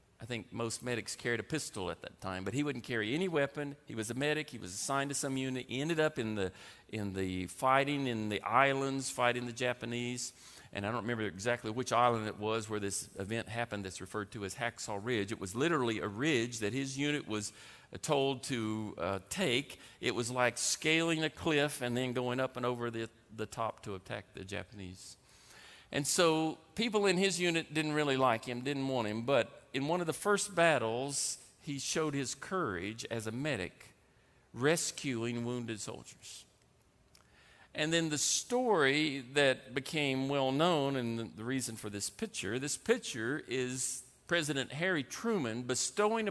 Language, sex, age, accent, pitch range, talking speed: English, male, 50-69, American, 115-145 Hz, 185 wpm